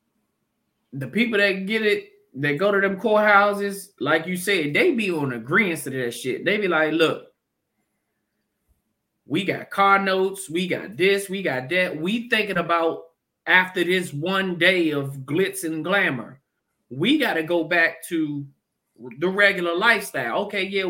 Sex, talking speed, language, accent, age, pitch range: male, 160 wpm, English, American, 20-39, 155-200 Hz